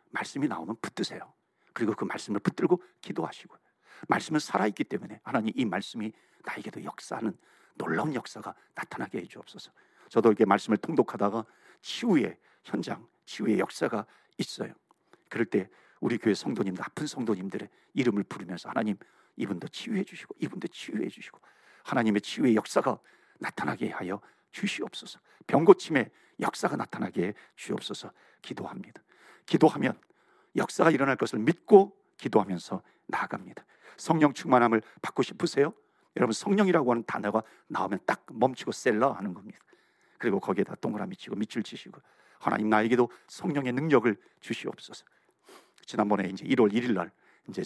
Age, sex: 50-69, male